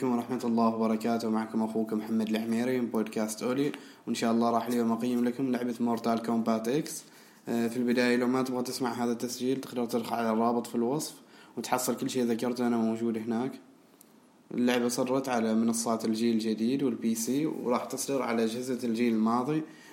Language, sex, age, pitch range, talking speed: Arabic, male, 20-39, 115-125 Hz, 170 wpm